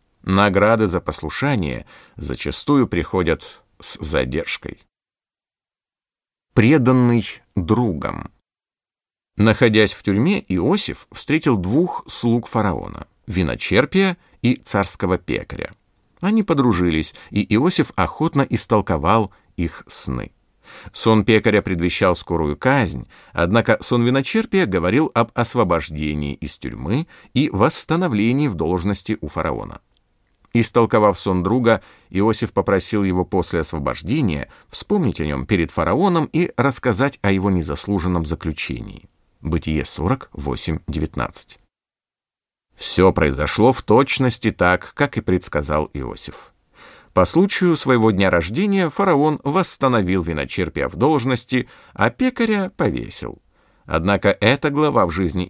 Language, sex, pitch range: Russian, male, 85-125 Hz